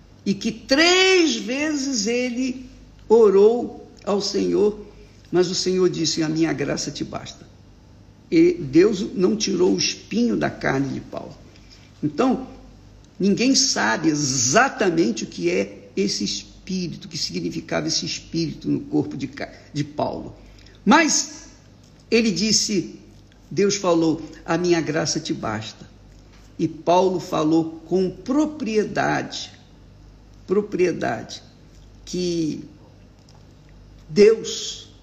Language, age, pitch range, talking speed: Portuguese, 60-79, 155-225 Hz, 110 wpm